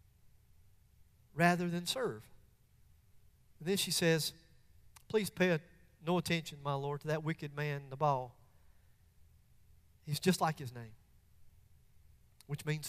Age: 40-59